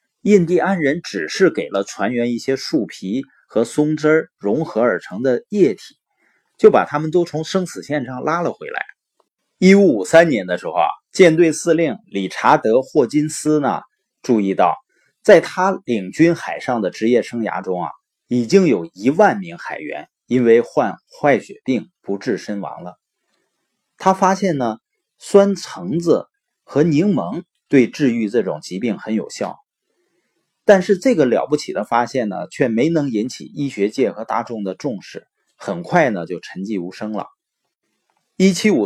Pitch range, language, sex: 115-180 Hz, Chinese, male